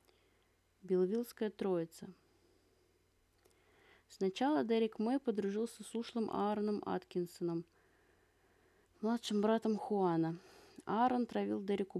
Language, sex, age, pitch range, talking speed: Russian, female, 20-39, 180-210 Hz, 80 wpm